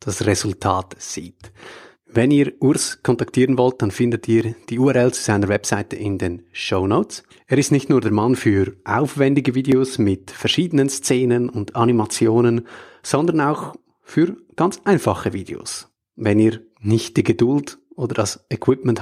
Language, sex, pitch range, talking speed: German, male, 110-145 Hz, 150 wpm